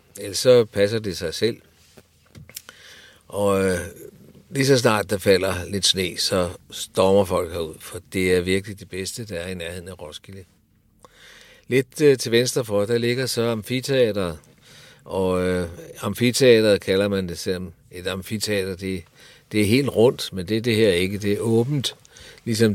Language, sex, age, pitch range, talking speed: Danish, male, 60-79, 95-115 Hz, 175 wpm